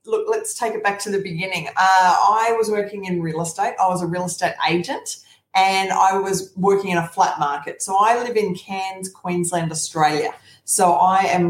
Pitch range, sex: 175-210 Hz, female